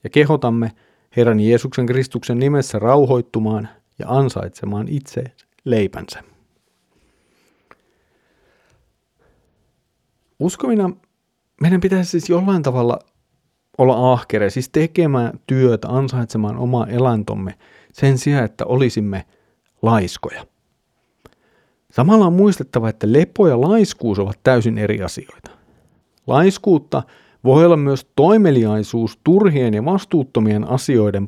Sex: male